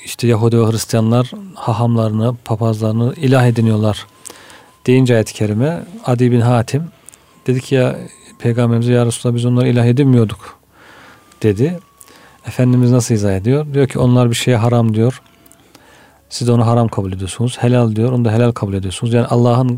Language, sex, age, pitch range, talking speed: Turkish, male, 40-59, 110-130 Hz, 150 wpm